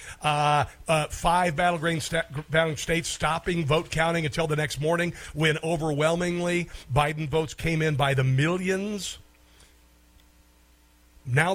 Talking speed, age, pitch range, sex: 125 wpm, 50-69, 140-180 Hz, male